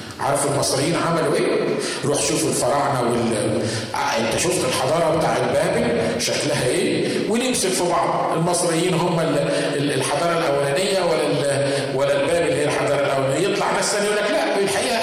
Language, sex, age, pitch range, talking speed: Arabic, male, 40-59, 130-180 Hz, 150 wpm